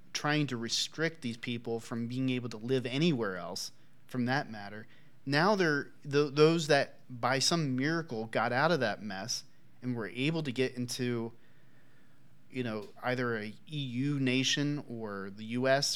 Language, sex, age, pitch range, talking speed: English, male, 30-49, 115-140 Hz, 160 wpm